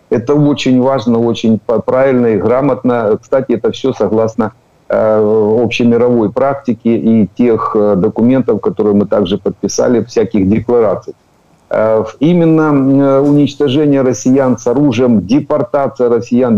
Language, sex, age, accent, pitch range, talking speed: Ukrainian, male, 50-69, native, 110-135 Hz, 120 wpm